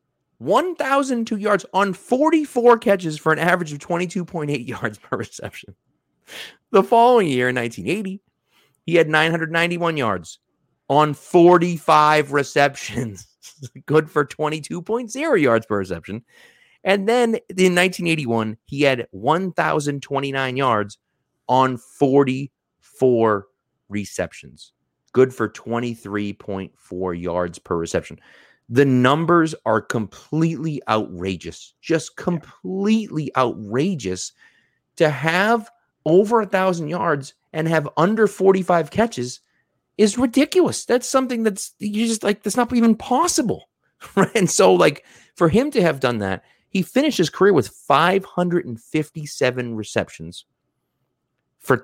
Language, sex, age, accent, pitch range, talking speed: English, male, 30-49, American, 120-190 Hz, 115 wpm